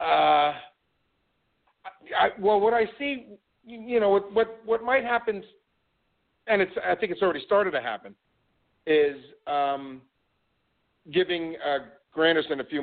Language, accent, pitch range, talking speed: English, American, 130-185 Hz, 135 wpm